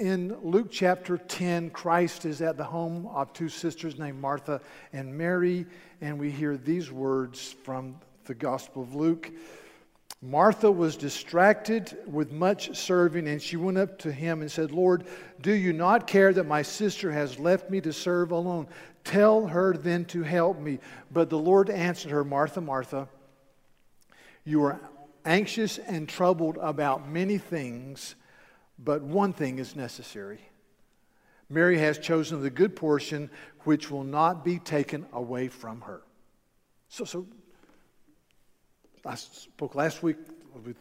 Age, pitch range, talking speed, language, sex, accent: 50-69, 135-175 Hz, 150 wpm, English, male, American